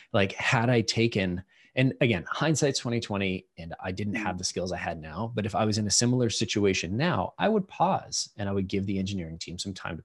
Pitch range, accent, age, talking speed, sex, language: 95-120 Hz, American, 30-49, 235 wpm, male, English